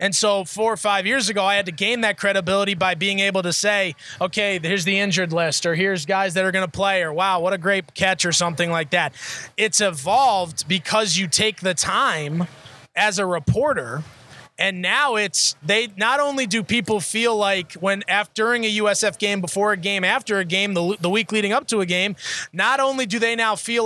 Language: English